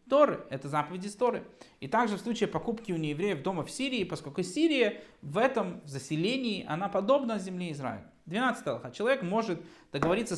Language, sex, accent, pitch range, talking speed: Russian, male, native, 160-215 Hz, 155 wpm